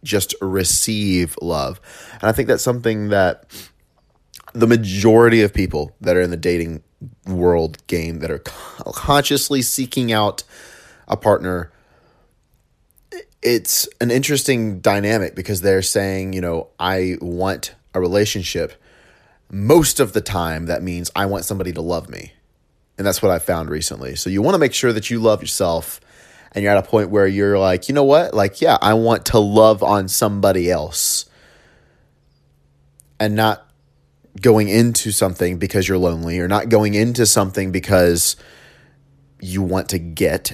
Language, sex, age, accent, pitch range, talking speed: English, male, 30-49, American, 90-115 Hz, 155 wpm